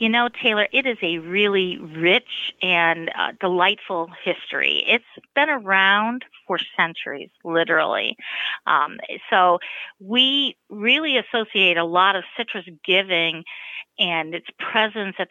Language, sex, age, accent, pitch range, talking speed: English, female, 40-59, American, 170-225 Hz, 125 wpm